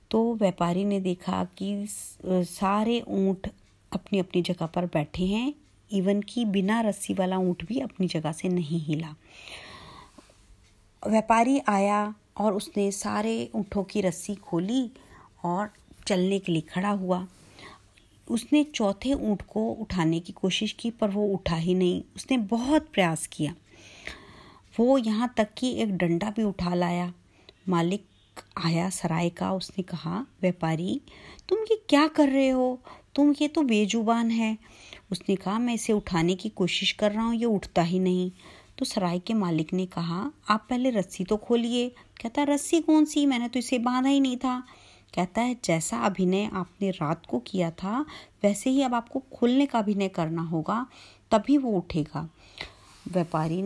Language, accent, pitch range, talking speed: Hindi, native, 175-230 Hz, 130 wpm